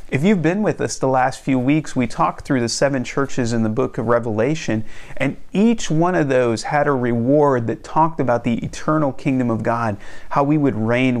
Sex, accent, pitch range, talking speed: male, American, 115-150 Hz, 215 wpm